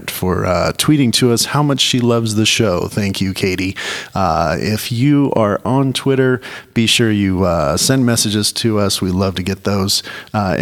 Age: 40-59